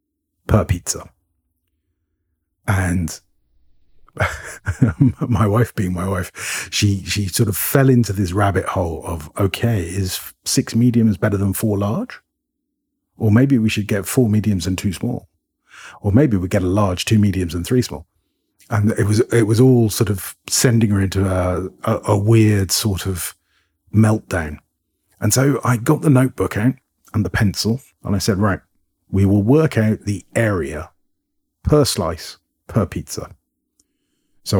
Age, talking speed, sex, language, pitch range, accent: 40-59, 155 wpm, male, English, 90-115 Hz, British